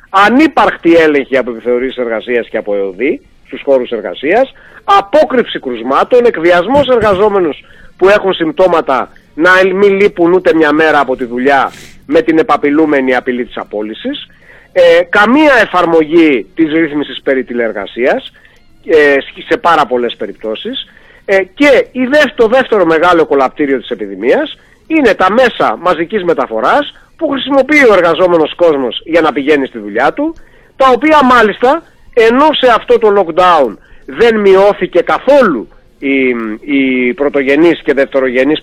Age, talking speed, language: 30-49, 135 wpm, Greek